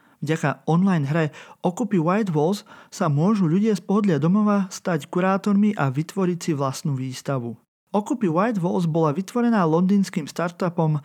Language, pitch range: Slovak, 150-200 Hz